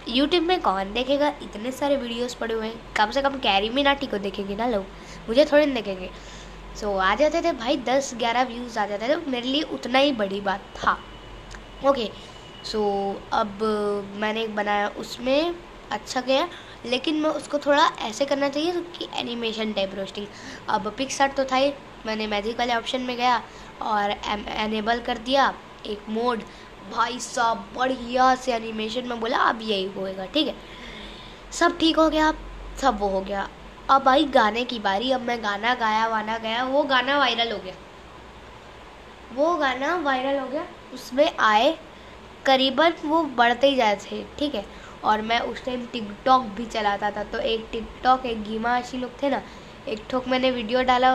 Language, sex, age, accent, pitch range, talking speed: Hindi, female, 20-39, native, 215-275 Hz, 150 wpm